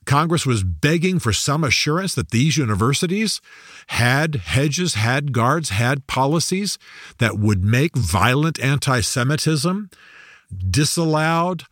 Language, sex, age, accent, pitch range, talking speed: English, male, 50-69, American, 105-150 Hz, 110 wpm